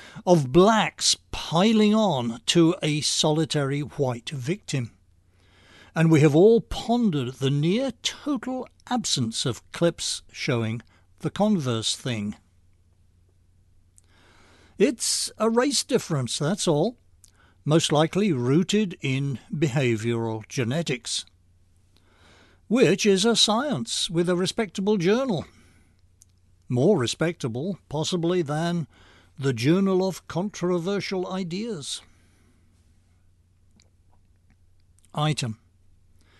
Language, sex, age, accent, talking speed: English, male, 60-79, British, 90 wpm